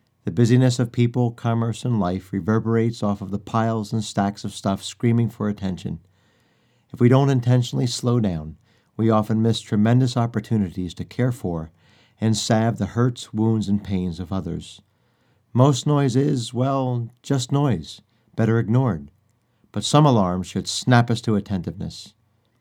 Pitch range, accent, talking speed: 100-120 Hz, American, 155 wpm